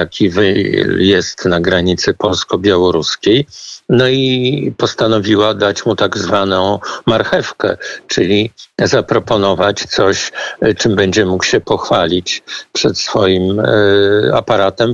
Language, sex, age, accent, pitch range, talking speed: Polish, male, 50-69, native, 95-115 Hz, 95 wpm